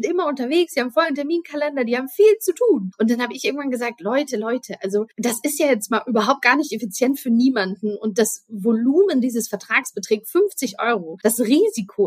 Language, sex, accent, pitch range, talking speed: German, female, German, 210-265 Hz, 205 wpm